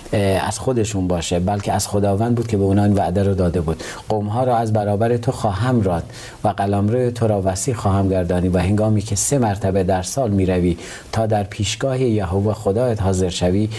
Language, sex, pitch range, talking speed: Persian, male, 100-120 Hz, 195 wpm